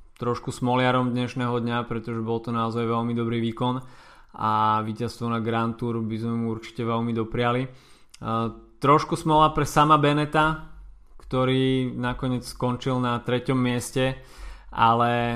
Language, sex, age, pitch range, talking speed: Slovak, male, 20-39, 110-125 Hz, 135 wpm